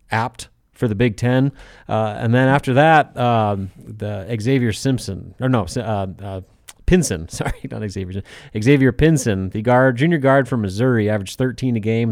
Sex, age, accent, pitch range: male, 30-49, American, 100-120 Hz